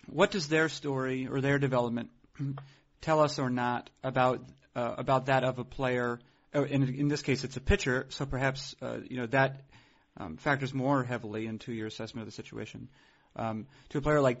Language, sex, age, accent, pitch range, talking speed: English, male, 30-49, American, 115-135 Hz, 195 wpm